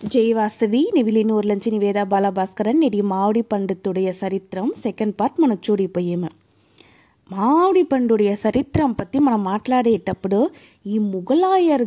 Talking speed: 120 wpm